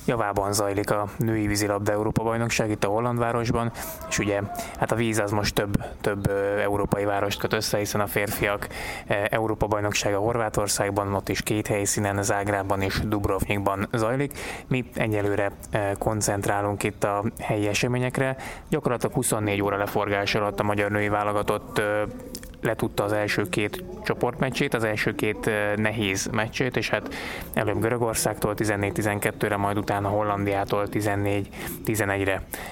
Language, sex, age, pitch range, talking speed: Hungarian, male, 20-39, 100-110 Hz, 130 wpm